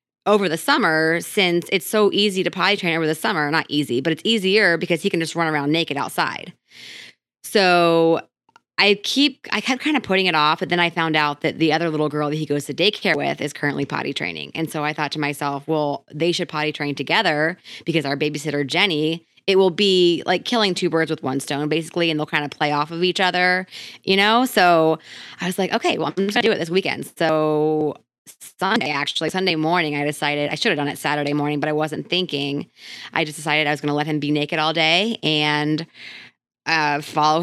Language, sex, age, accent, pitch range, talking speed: English, female, 20-39, American, 150-185 Hz, 225 wpm